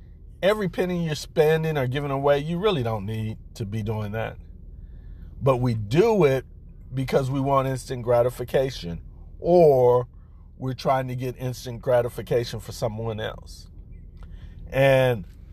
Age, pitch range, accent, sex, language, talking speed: 50-69, 90-140 Hz, American, male, English, 135 wpm